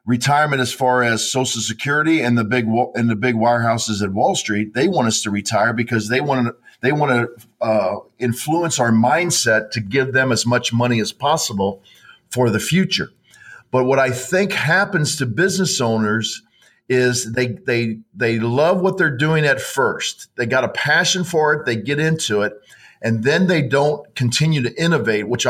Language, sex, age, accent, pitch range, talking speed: English, male, 50-69, American, 115-155 Hz, 185 wpm